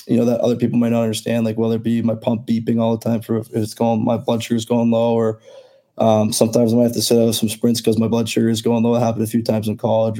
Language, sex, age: English, male, 20-39